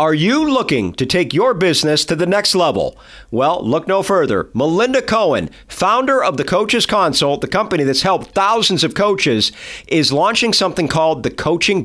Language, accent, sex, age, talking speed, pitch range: English, American, male, 50-69, 175 wpm, 150-200 Hz